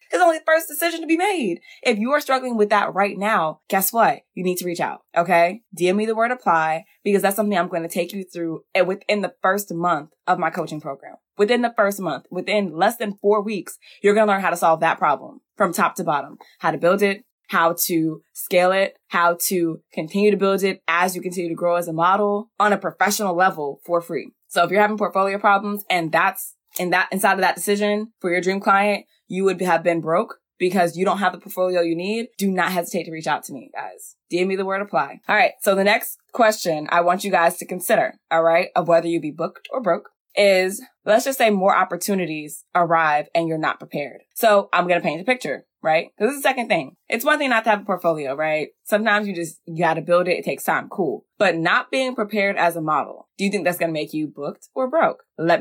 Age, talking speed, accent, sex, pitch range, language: 20-39, 245 wpm, American, female, 170-205 Hz, English